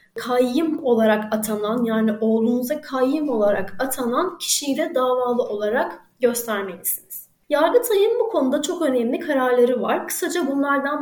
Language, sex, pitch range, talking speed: Turkish, female, 230-305 Hz, 115 wpm